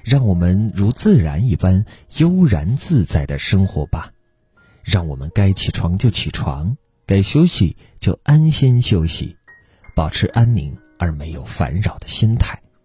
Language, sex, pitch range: Chinese, male, 85-120 Hz